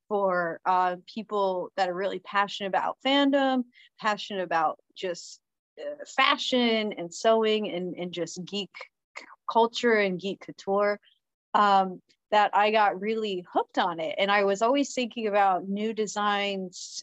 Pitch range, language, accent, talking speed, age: 185-225 Hz, English, American, 140 wpm, 30-49